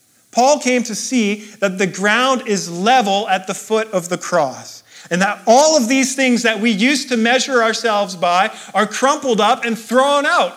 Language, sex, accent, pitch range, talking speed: English, male, American, 170-235 Hz, 195 wpm